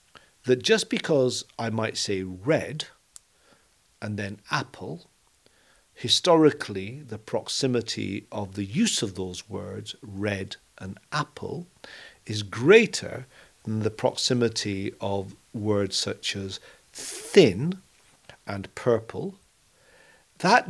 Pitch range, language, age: 100-125 Hz, Danish, 50-69